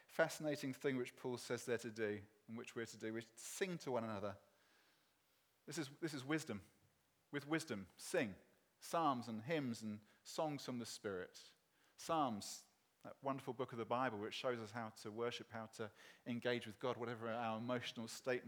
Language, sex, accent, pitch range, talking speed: English, male, British, 115-140 Hz, 180 wpm